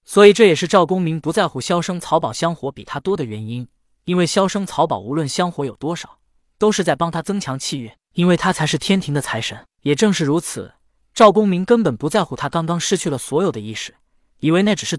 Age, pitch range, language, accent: 20-39, 135-195 Hz, Chinese, native